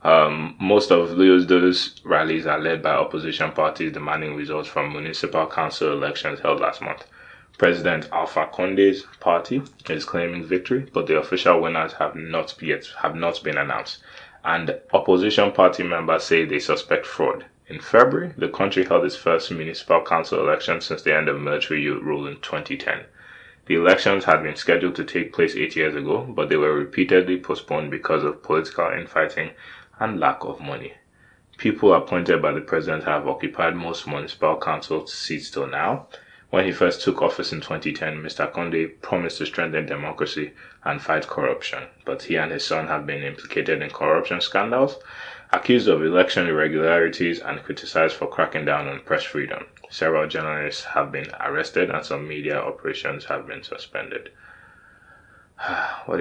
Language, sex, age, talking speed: English, male, 20-39, 165 wpm